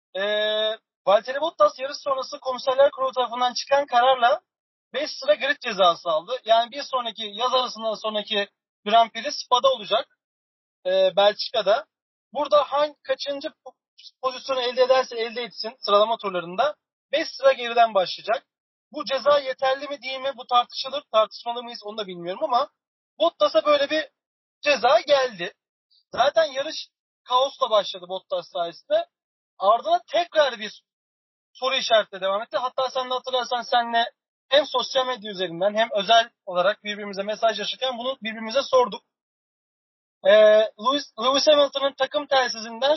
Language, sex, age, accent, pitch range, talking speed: Turkish, male, 40-59, native, 225-285 Hz, 130 wpm